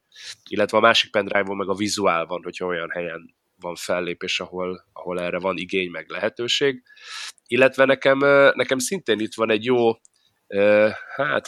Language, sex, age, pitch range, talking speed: Hungarian, male, 20-39, 95-120 Hz, 150 wpm